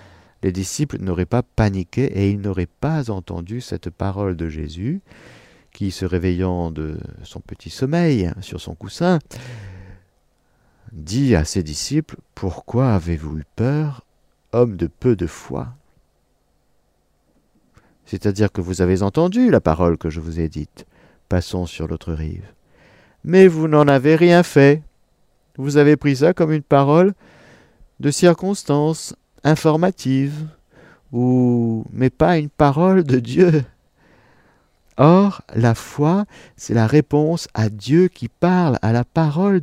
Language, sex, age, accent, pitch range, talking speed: French, male, 50-69, French, 90-145 Hz, 135 wpm